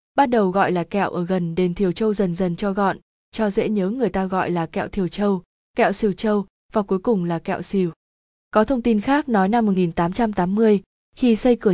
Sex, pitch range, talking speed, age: female, 185-225 Hz, 220 wpm, 20-39